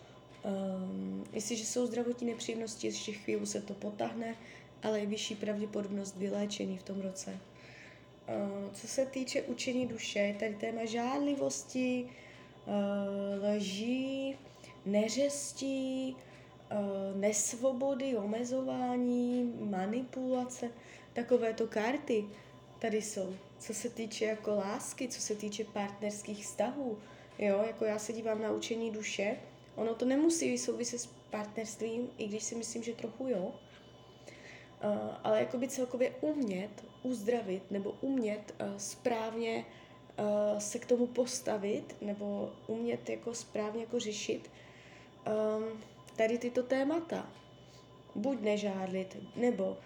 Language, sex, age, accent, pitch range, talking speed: Czech, female, 20-39, native, 205-245 Hz, 110 wpm